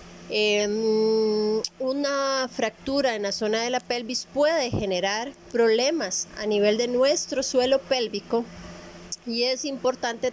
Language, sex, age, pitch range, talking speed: Spanish, female, 30-49, 200-245 Hz, 120 wpm